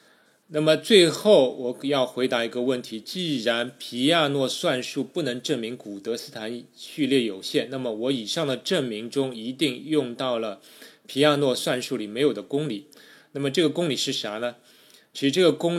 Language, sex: Chinese, male